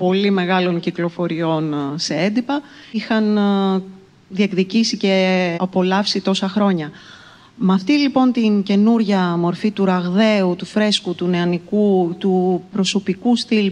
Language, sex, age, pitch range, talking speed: Greek, female, 30-49, 170-210 Hz, 115 wpm